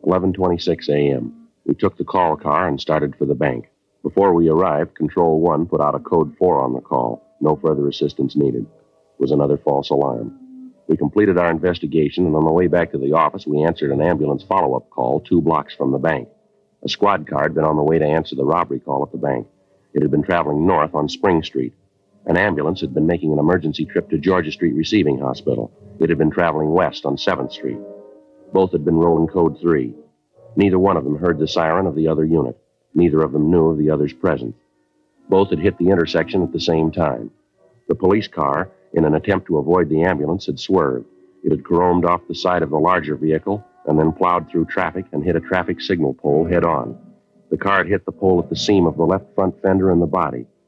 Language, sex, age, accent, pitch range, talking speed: English, male, 50-69, American, 75-90 Hz, 220 wpm